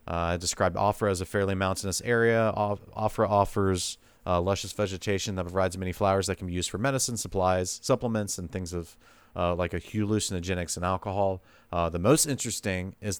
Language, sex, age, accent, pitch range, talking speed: English, male, 30-49, American, 90-110 Hz, 175 wpm